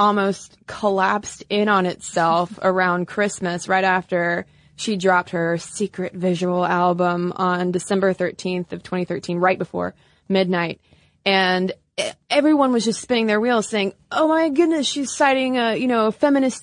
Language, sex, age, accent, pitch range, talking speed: English, female, 20-39, American, 185-235 Hz, 150 wpm